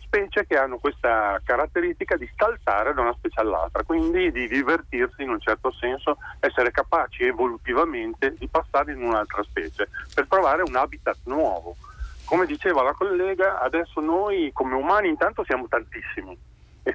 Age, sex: 40-59, male